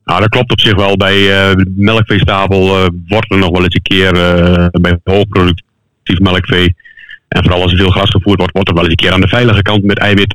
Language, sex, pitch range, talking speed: Dutch, male, 95-110 Hz, 240 wpm